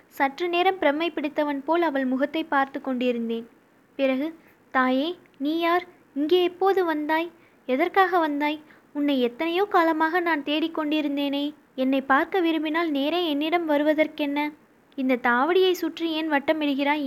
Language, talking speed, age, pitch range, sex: Tamil, 120 wpm, 20-39, 270-330 Hz, female